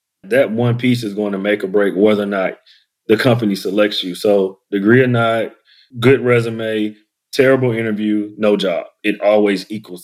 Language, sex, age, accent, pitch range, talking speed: English, male, 30-49, American, 105-120 Hz, 175 wpm